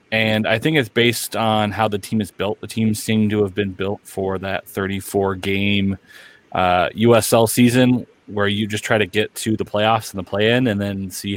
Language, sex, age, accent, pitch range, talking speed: English, male, 30-49, American, 100-115 Hz, 205 wpm